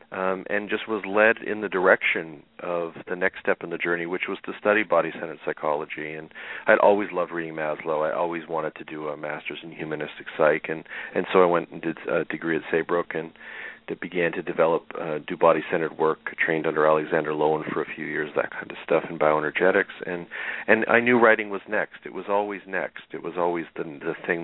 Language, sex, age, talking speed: English, male, 40-59, 220 wpm